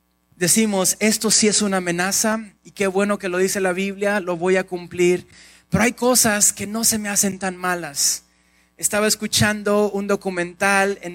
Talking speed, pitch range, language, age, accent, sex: 180 wpm, 185-225 Hz, Spanish, 30-49, Mexican, male